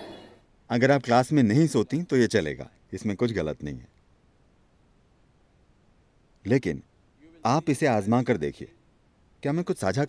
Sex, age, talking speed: male, 40-59, 145 wpm